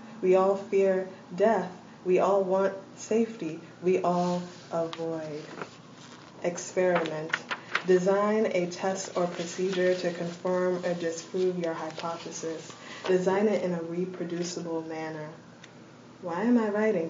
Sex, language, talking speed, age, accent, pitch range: female, English, 115 wpm, 20-39, American, 165-185 Hz